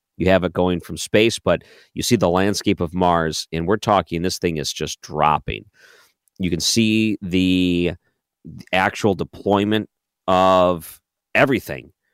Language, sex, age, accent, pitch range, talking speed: English, male, 40-59, American, 85-100 Hz, 145 wpm